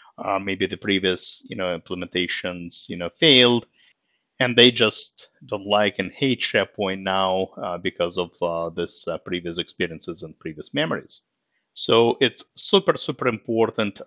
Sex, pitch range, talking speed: male, 95-115 Hz, 150 wpm